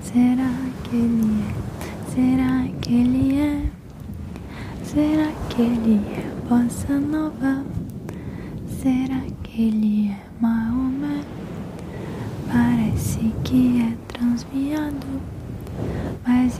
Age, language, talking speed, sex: 10-29, Portuguese, 85 wpm, female